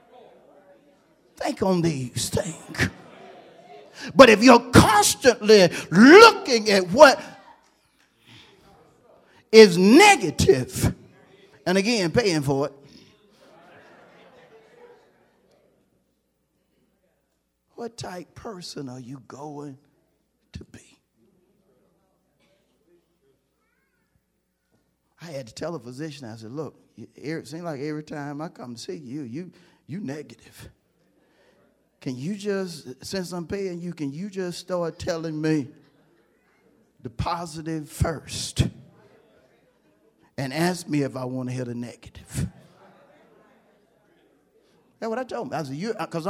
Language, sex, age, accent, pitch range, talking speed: English, male, 40-59, American, 140-190 Hz, 110 wpm